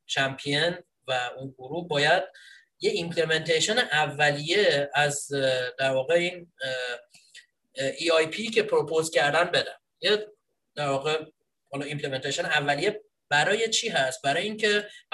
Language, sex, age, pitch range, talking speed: Persian, male, 30-49, 135-215 Hz, 115 wpm